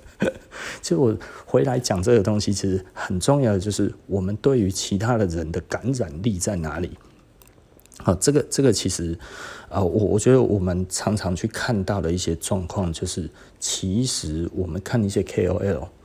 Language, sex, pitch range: Chinese, male, 95-125 Hz